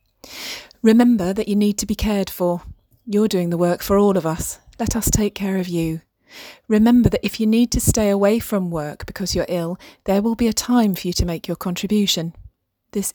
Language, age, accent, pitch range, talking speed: English, 30-49, British, 175-205 Hz, 215 wpm